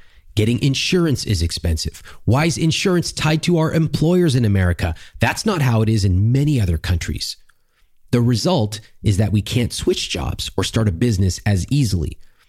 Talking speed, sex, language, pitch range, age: 175 wpm, male, English, 90-125 Hz, 30-49